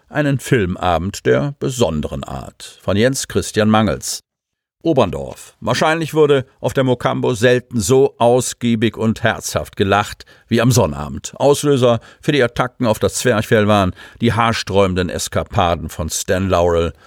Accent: German